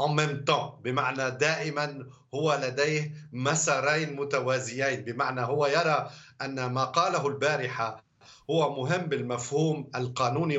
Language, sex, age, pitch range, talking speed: Arabic, male, 50-69, 135-170 Hz, 95 wpm